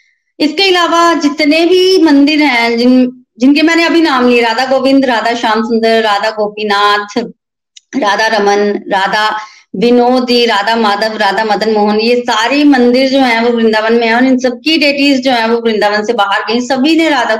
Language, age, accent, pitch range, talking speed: Hindi, 20-39, native, 210-260 Hz, 175 wpm